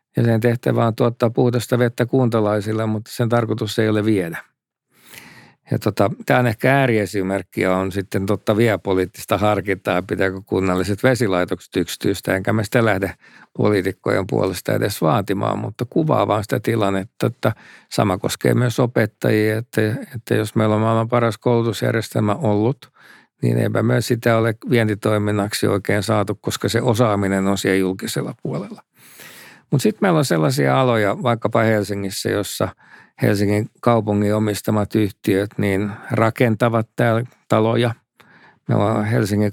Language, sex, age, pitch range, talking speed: Finnish, male, 50-69, 100-115 Hz, 135 wpm